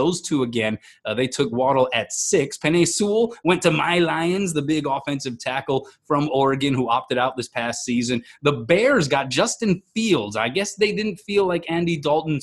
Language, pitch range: English, 130-175 Hz